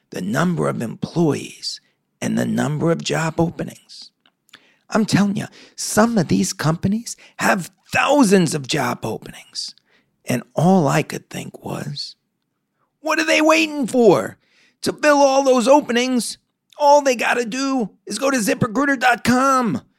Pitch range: 195-290 Hz